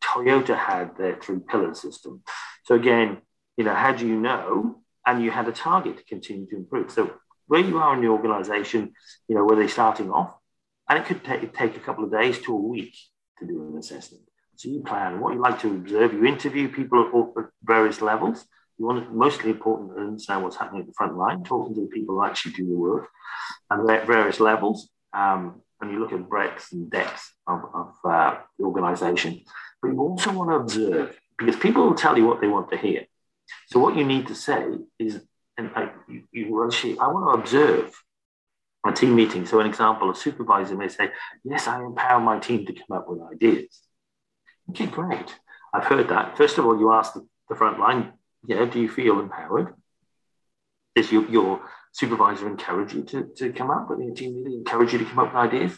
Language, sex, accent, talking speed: English, male, British, 210 wpm